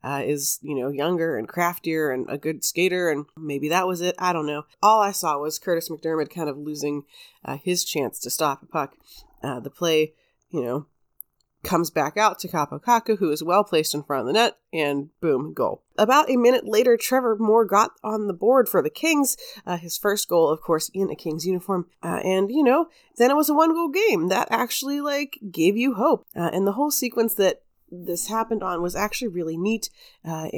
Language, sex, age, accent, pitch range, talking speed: English, female, 30-49, American, 160-220 Hz, 215 wpm